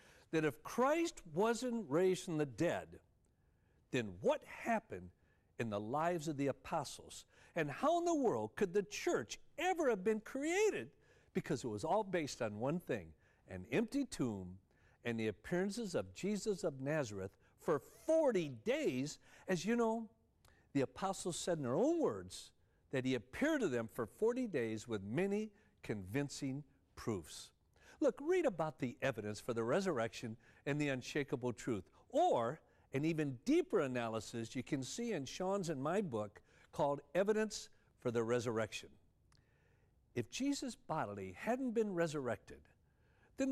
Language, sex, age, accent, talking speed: English, male, 60-79, American, 150 wpm